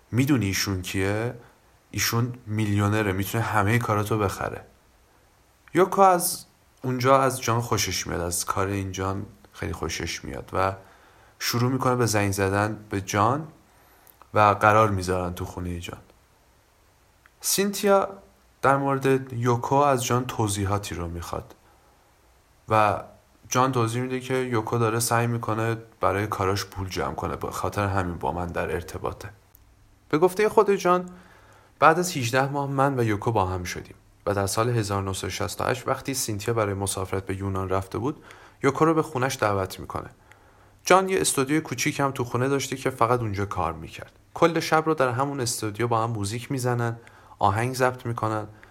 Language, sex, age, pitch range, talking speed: Persian, male, 30-49, 100-130 Hz, 155 wpm